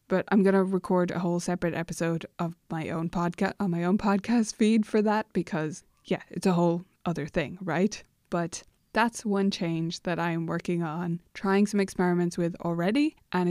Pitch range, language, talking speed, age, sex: 175-205 Hz, English, 190 wpm, 20-39, female